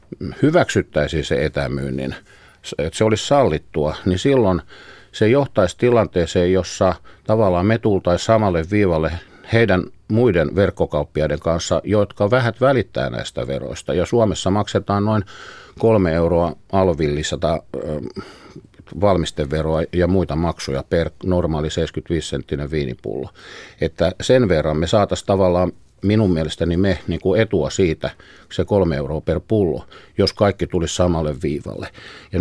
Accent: native